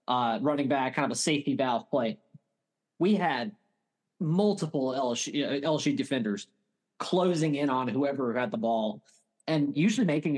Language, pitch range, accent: English, 135-170 Hz, American